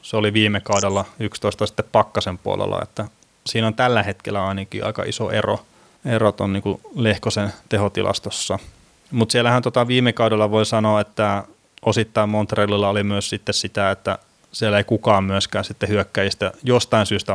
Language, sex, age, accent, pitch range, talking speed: Finnish, male, 20-39, native, 100-115 Hz, 150 wpm